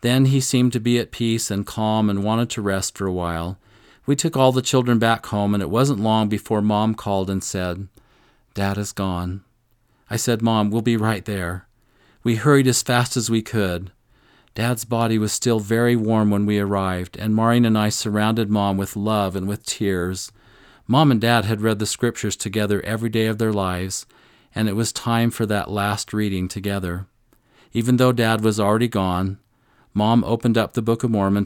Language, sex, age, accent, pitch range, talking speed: English, male, 40-59, American, 100-120 Hz, 200 wpm